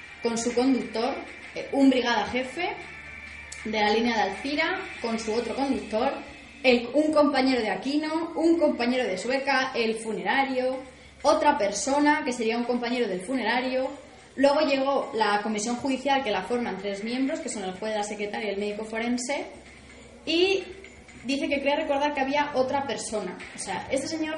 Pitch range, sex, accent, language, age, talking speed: 230-290 Hz, female, Spanish, Spanish, 20-39, 165 wpm